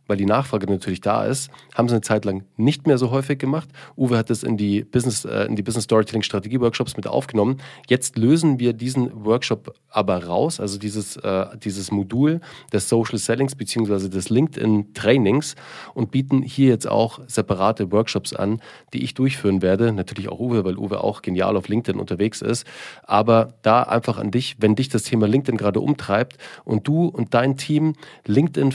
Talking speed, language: 190 wpm, German